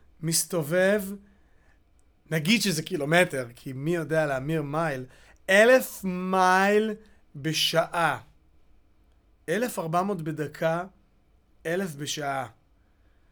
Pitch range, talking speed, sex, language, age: 150-195 Hz, 80 wpm, male, Hebrew, 30-49